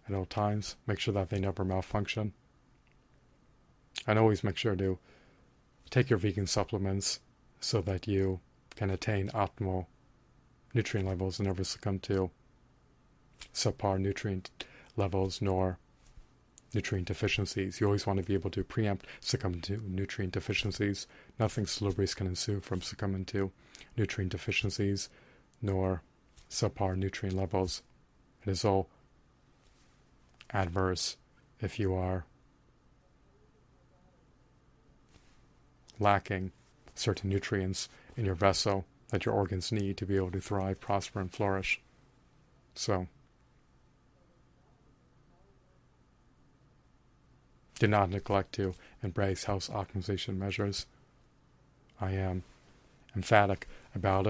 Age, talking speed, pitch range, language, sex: 30-49, 110 wpm, 95-105 Hz, English, male